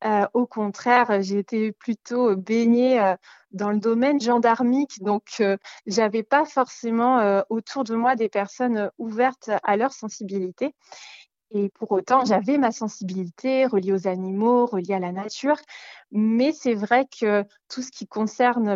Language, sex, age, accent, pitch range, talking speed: French, female, 20-39, French, 205-255 Hz, 155 wpm